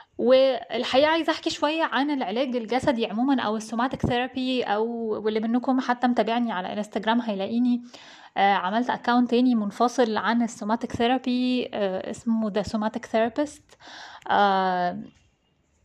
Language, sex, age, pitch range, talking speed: Arabic, female, 20-39, 220-270 Hz, 125 wpm